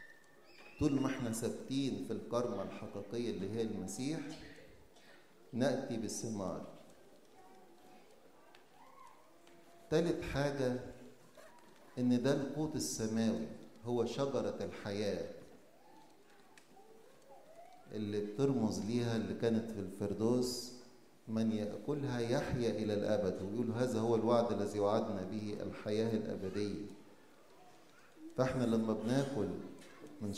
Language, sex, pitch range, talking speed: English, male, 105-140 Hz, 90 wpm